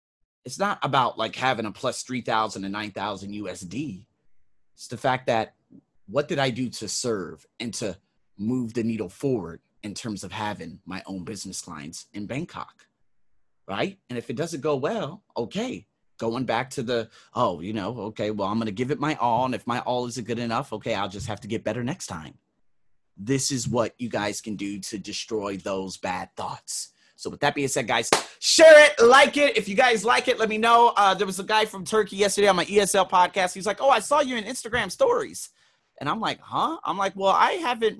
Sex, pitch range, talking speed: male, 125-195 Hz, 215 wpm